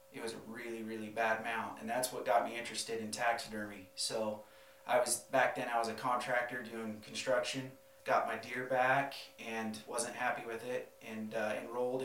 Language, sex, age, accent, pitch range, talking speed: English, male, 30-49, American, 115-135 Hz, 190 wpm